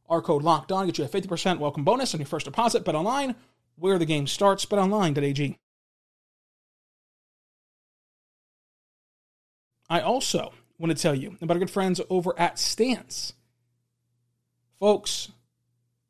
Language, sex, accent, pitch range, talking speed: English, male, American, 140-185 Hz, 135 wpm